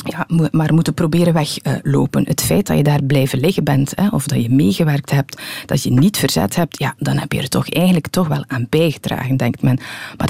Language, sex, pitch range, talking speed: Dutch, female, 140-170 Hz, 215 wpm